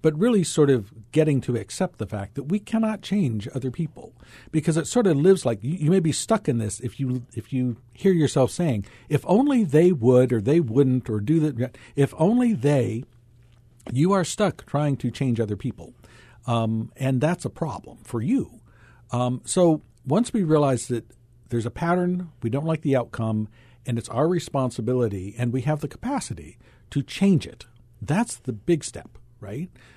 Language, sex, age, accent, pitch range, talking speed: English, male, 50-69, American, 115-155 Hz, 190 wpm